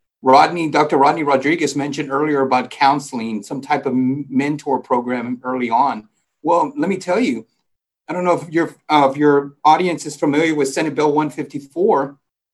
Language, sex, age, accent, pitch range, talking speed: English, male, 40-59, American, 135-165 Hz, 165 wpm